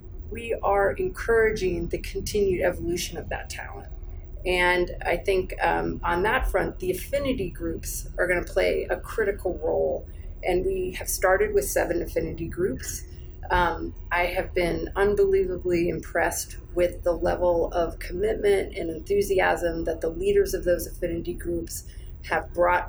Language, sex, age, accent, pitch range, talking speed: English, female, 30-49, American, 165-200 Hz, 145 wpm